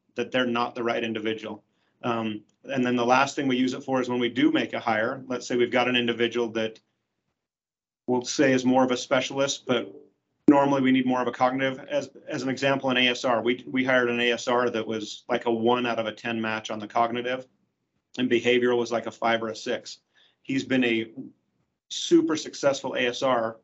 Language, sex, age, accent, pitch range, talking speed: English, male, 40-59, American, 120-130 Hz, 215 wpm